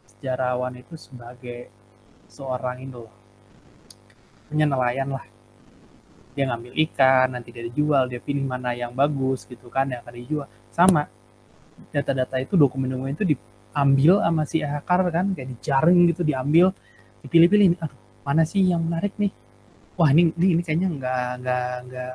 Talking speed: 140 wpm